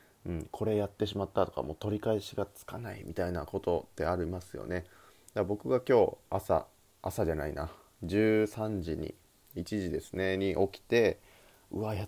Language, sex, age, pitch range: Japanese, male, 20-39, 90-115 Hz